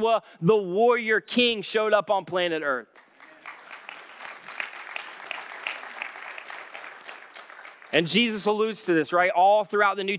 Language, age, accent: English, 30-49, American